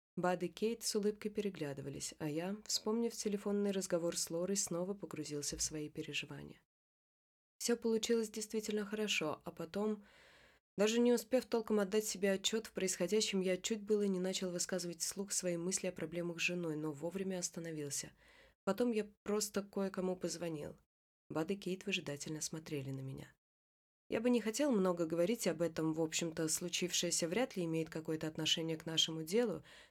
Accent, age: native, 20-39